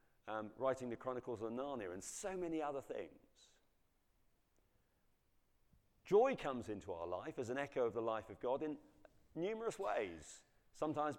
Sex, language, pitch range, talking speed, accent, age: male, English, 105-140 Hz, 150 wpm, British, 40-59